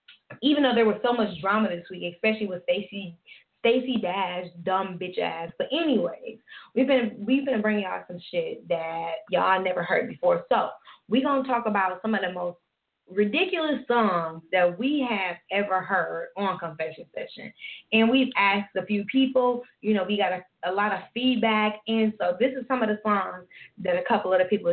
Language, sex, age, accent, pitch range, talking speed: English, female, 10-29, American, 185-235 Hz, 195 wpm